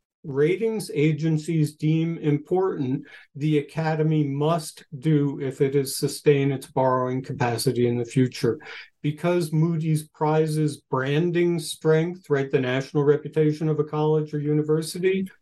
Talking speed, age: 125 wpm, 50-69